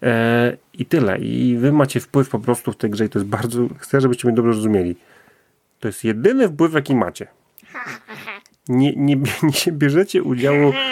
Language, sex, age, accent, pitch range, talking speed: Polish, male, 30-49, native, 110-135 Hz, 170 wpm